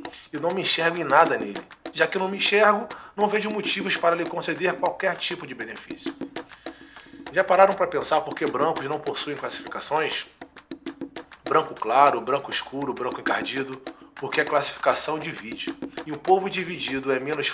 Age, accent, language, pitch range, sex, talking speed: 20-39, Brazilian, Portuguese, 150-210 Hz, male, 170 wpm